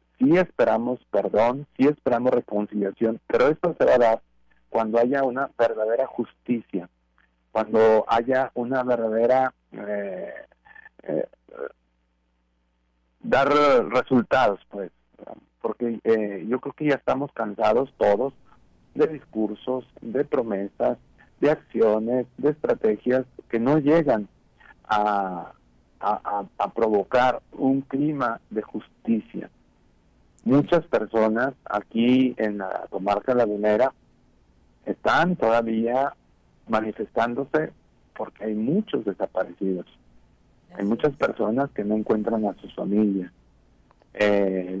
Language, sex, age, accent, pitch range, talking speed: Spanish, male, 50-69, Mexican, 100-125 Hz, 105 wpm